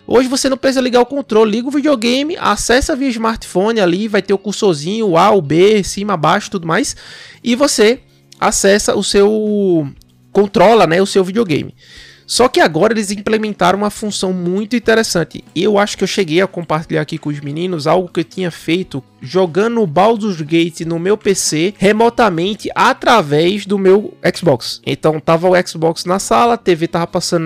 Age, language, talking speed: 20-39, Portuguese, 180 wpm